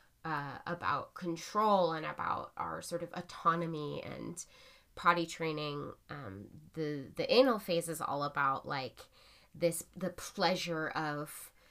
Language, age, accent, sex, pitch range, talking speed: English, 20-39, American, female, 150-180 Hz, 130 wpm